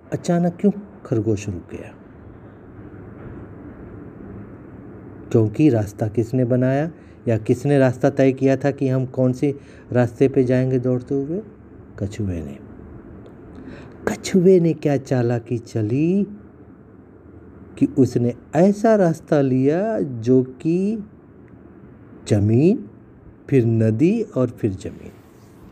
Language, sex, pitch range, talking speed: Hindi, male, 105-140 Hz, 105 wpm